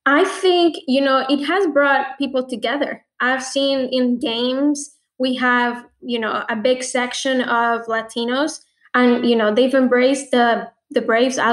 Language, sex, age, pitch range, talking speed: English, female, 10-29, 230-265 Hz, 160 wpm